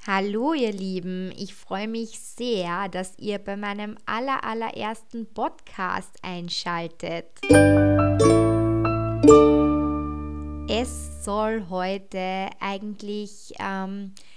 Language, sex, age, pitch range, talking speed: German, female, 20-39, 185-225 Hz, 80 wpm